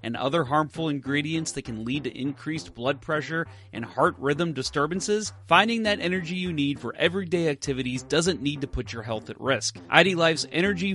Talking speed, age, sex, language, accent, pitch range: 185 wpm, 30-49, male, English, American, 130-185 Hz